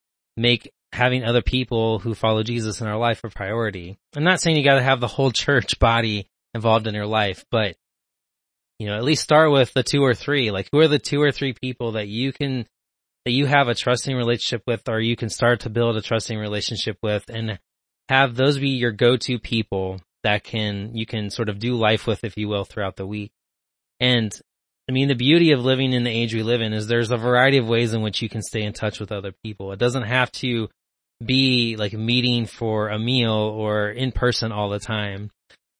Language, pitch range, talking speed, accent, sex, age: English, 110-130 Hz, 225 wpm, American, male, 20-39